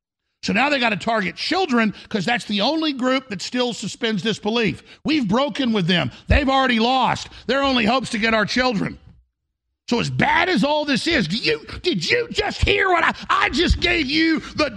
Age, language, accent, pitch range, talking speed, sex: 50-69, English, American, 210-325 Hz, 205 wpm, male